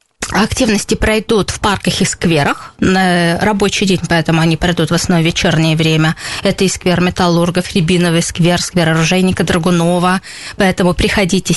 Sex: female